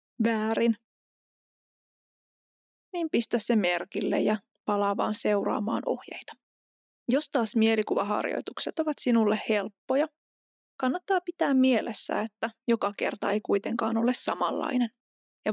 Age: 20-39